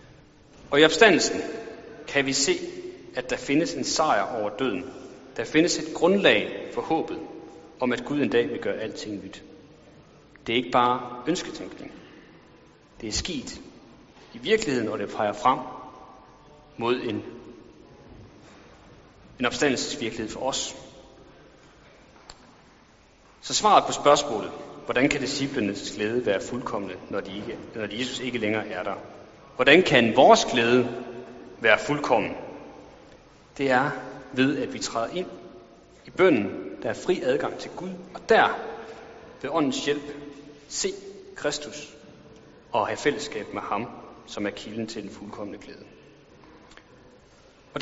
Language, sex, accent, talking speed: Danish, male, native, 135 wpm